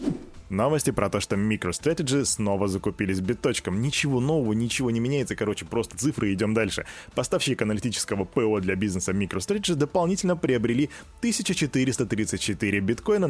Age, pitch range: 20-39, 105-150 Hz